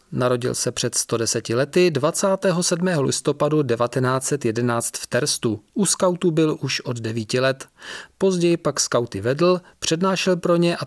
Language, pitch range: Czech, 120-165 Hz